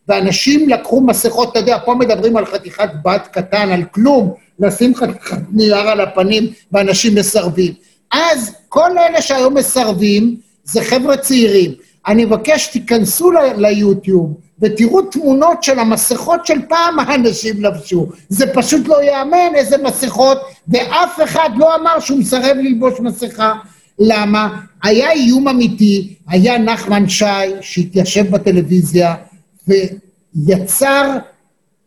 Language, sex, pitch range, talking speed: Hebrew, male, 195-245 Hz, 120 wpm